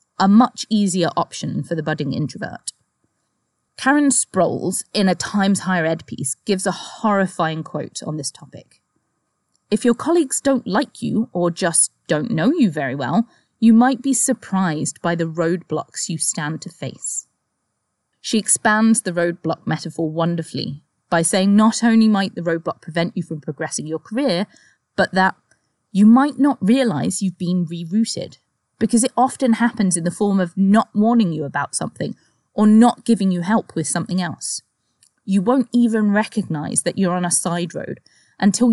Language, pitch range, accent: English, 170-225 Hz, British